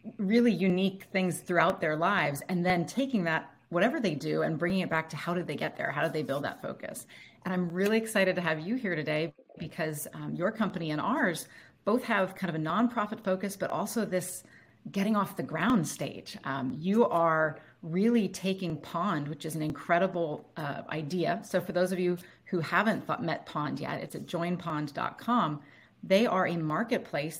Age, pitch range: 30-49, 160-205 Hz